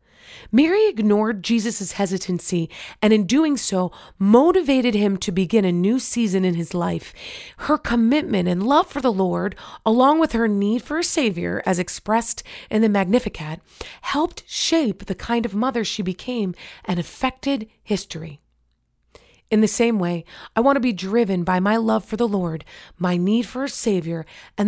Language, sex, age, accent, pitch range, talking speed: English, female, 30-49, American, 185-240 Hz, 170 wpm